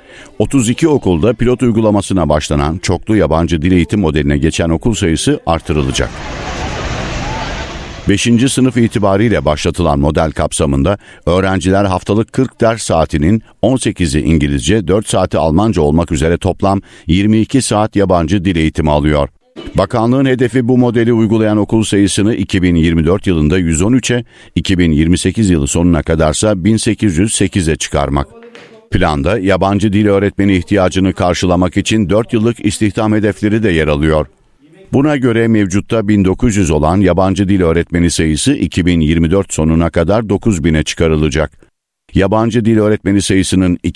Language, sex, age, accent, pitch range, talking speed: Turkish, male, 60-79, native, 85-110 Hz, 120 wpm